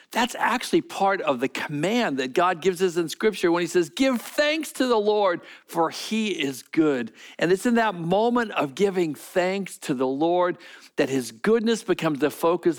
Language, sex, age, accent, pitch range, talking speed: English, male, 50-69, American, 155-215 Hz, 190 wpm